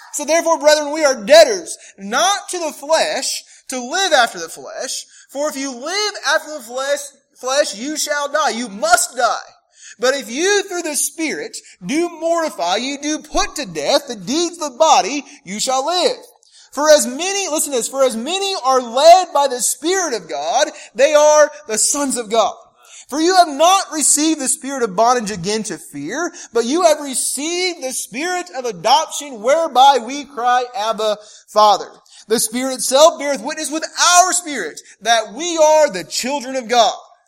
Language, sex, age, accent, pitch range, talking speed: English, male, 30-49, American, 240-330 Hz, 180 wpm